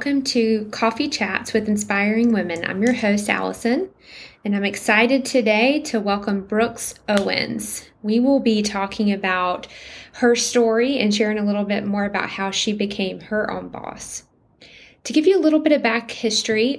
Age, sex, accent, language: 20-39, female, American, English